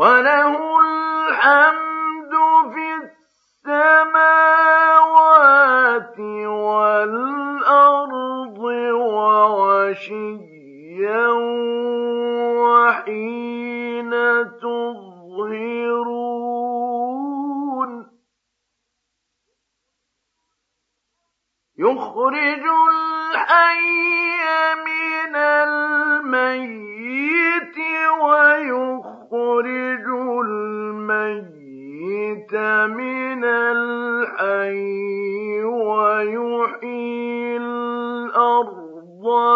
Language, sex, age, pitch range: Arabic, male, 50-69, 215-295 Hz